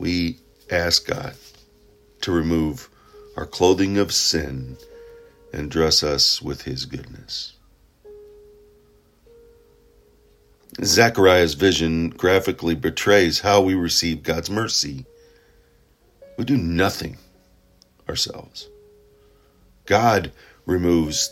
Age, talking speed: 50-69, 85 wpm